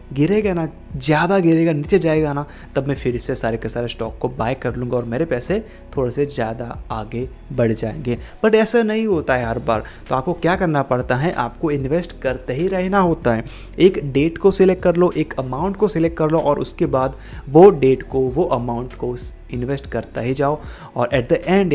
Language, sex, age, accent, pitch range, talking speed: Hindi, male, 20-39, native, 125-165 Hz, 210 wpm